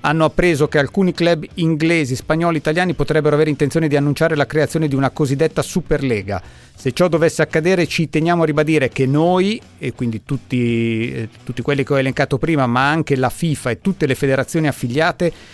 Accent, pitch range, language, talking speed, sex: native, 135-160 Hz, Italian, 185 wpm, male